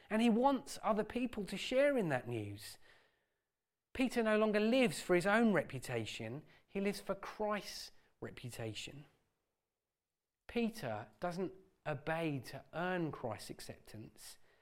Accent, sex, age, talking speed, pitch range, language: British, male, 30-49, 125 wpm, 145-210 Hz, English